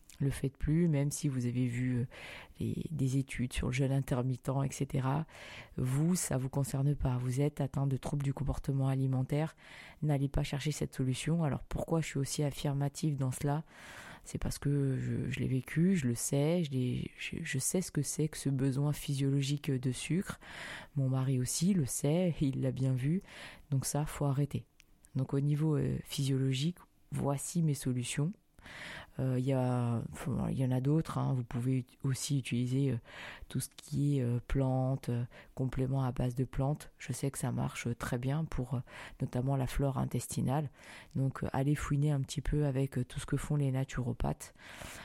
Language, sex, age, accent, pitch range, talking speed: French, female, 20-39, French, 130-145 Hz, 180 wpm